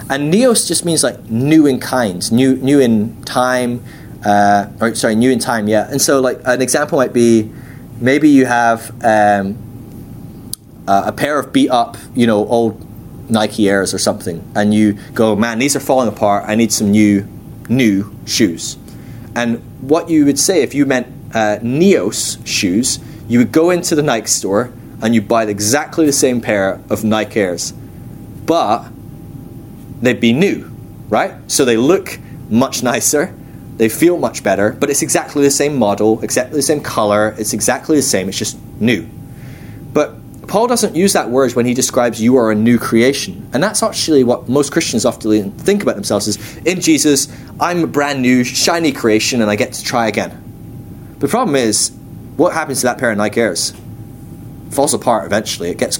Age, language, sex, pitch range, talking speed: 20-39, English, male, 110-145 Hz, 180 wpm